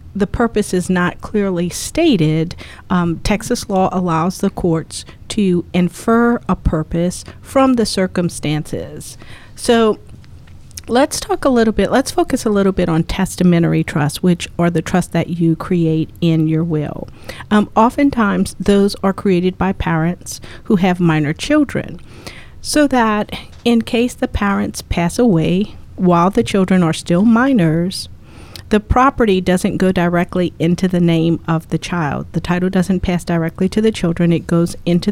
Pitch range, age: 170-215 Hz, 50-69